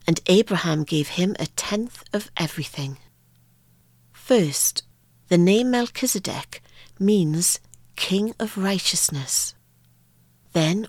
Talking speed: 95 wpm